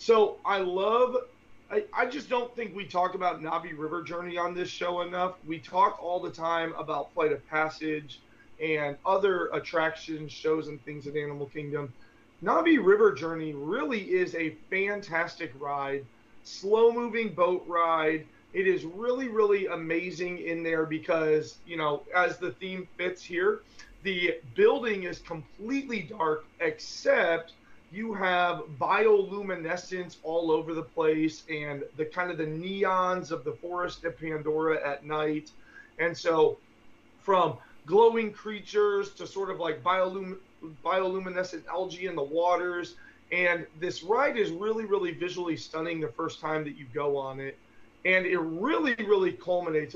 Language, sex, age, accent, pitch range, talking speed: English, male, 30-49, American, 155-200 Hz, 150 wpm